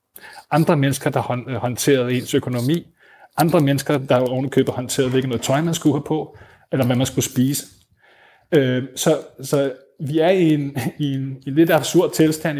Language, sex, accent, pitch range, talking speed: Danish, male, native, 135-160 Hz, 175 wpm